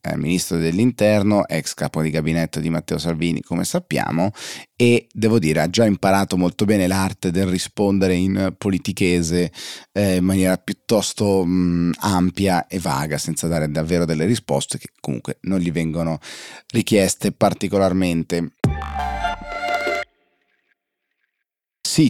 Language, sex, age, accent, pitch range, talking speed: Italian, male, 30-49, native, 85-105 Hz, 120 wpm